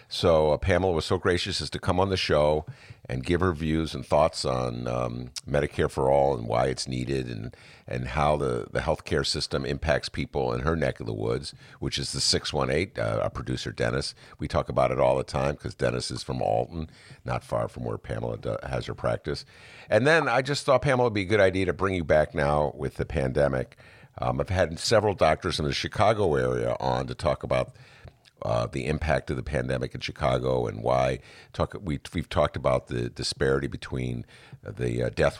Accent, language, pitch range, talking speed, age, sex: American, English, 65-85 Hz, 210 wpm, 50-69, male